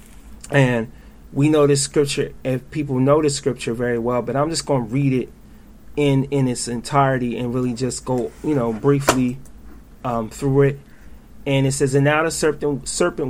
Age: 30-49